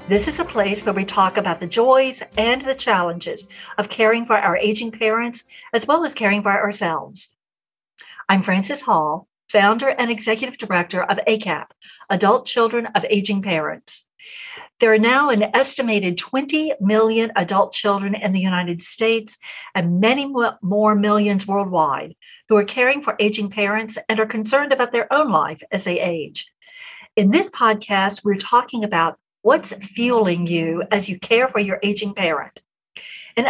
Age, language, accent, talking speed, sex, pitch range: 60-79, English, American, 160 wpm, female, 195-240 Hz